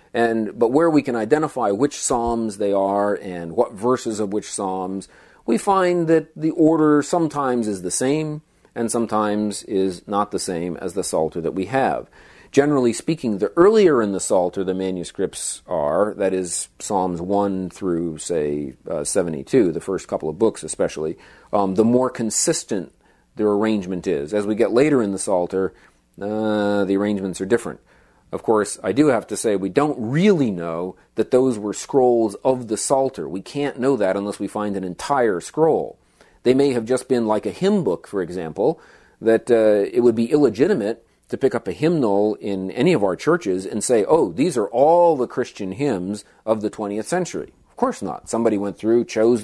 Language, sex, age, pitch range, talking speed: English, male, 40-59, 95-125 Hz, 185 wpm